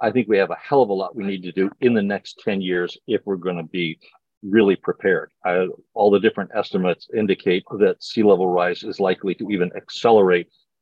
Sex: male